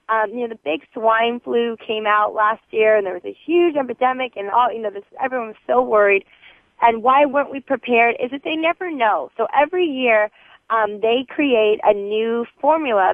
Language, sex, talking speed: English, female, 205 wpm